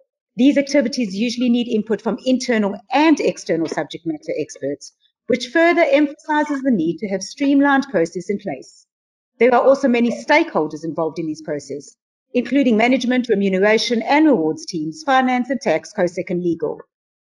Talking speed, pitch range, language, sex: 155 wpm, 195-280 Hz, English, female